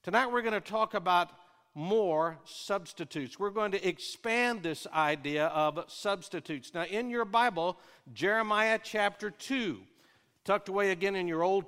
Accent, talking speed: American, 150 wpm